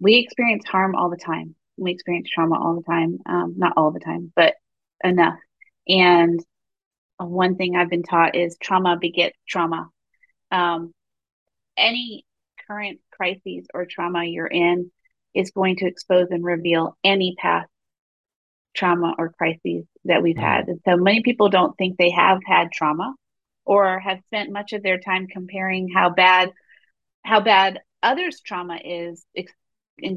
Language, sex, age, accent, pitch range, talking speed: English, female, 30-49, American, 170-195 Hz, 150 wpm